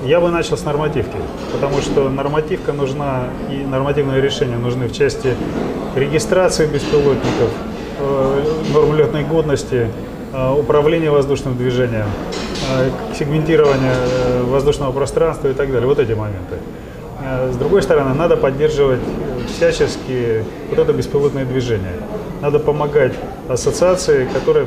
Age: 30-49